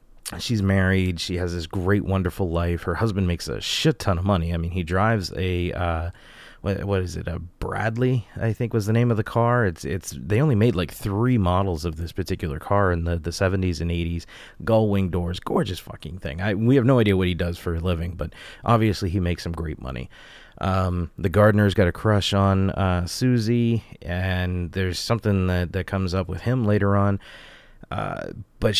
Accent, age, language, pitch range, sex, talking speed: American, 30-49, English, 90-110 Hz, male, 210 wpm